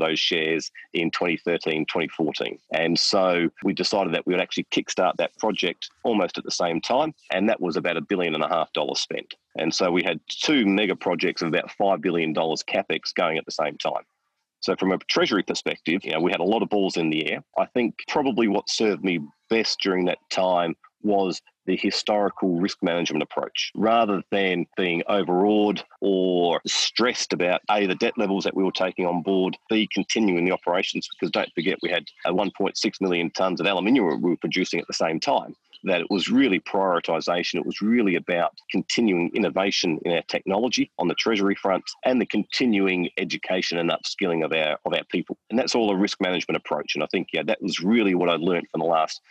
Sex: male